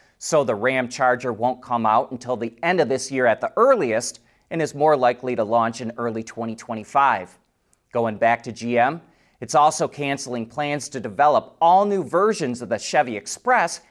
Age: 30-49